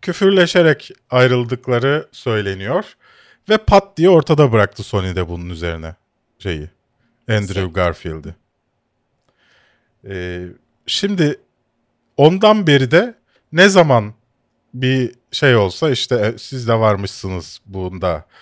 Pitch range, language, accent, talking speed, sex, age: 110-155 Hz, Turkish, native, 90 wpm, male, 40-59